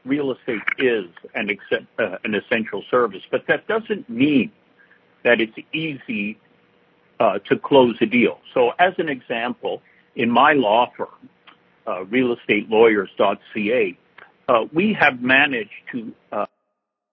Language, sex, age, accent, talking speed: English, male, 60-79, American, 125 wpm